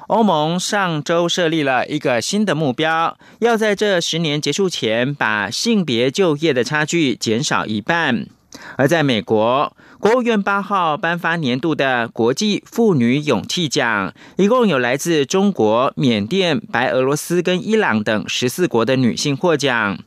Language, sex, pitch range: Chinese, male, 130-190 Hz